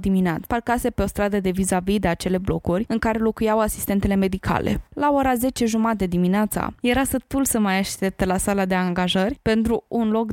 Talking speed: 185 wpm